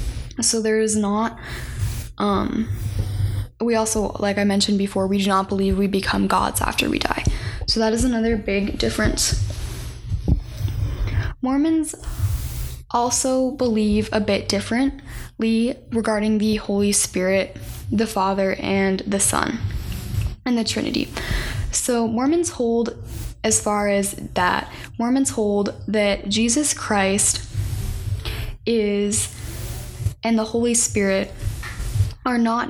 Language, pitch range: English, 185-225 Hz